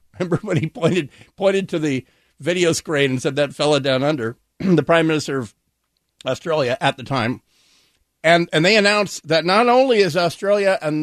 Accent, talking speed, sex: American, 180 wpm, male